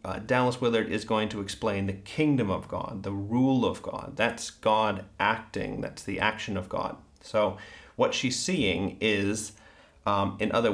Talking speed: 175 wpm